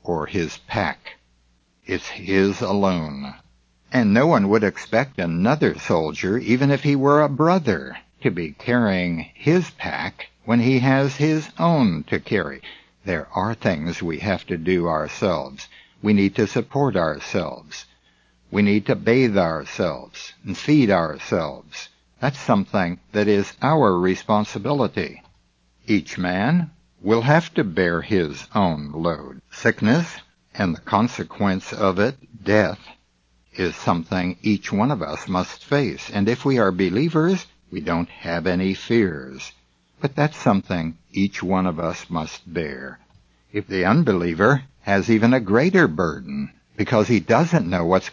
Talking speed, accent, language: 140 wpm, American, English